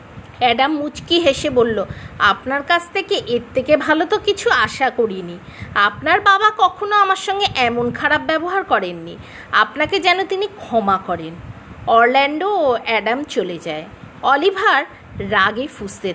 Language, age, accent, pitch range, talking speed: English, 50-69, Indian, 230-385 Hz, 135 wpm